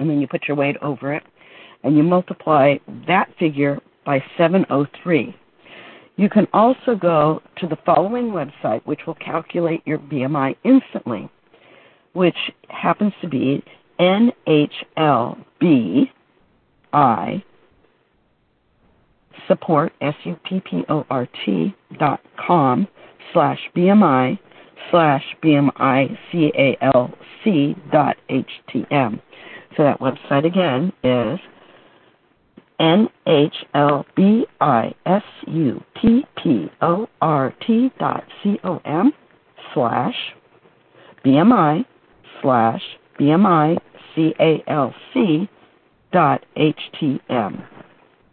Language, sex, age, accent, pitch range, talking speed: English, female, 60-79, American, 145-195 Hz, 80 wpm